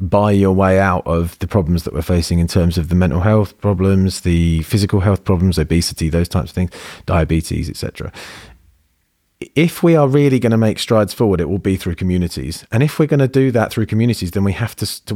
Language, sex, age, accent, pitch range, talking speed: English, male, 30-49, British, 90-110 Hz, 220 wpm